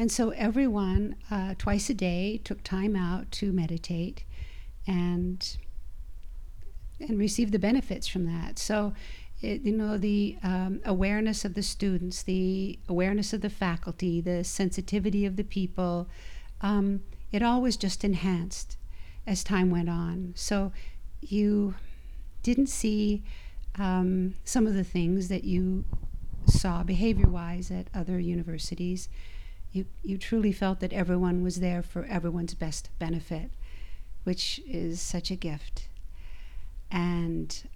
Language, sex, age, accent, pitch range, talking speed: English, female, 50-69, American, 170-210 Hz, 130 wpm